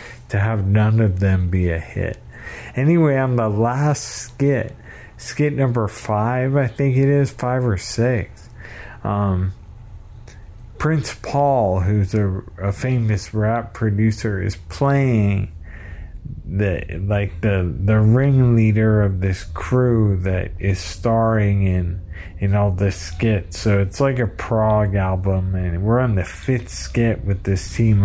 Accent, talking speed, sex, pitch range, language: American, 140 wpm, male, 95-125 Hz, English